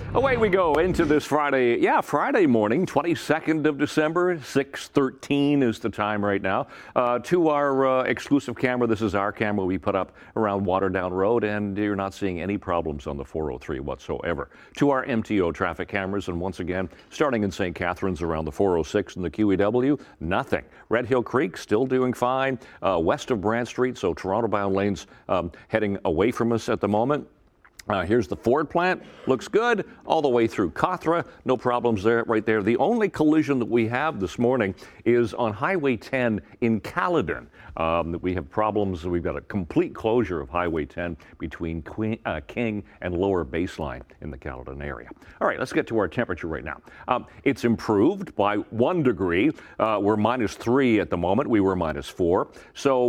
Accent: American